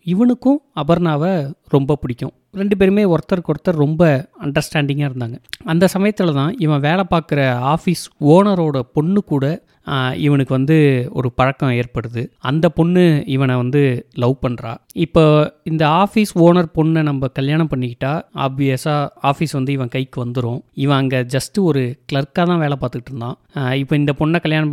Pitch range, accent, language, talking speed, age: 135-165 Hz, native, Tamil, 145 wpm, 30-49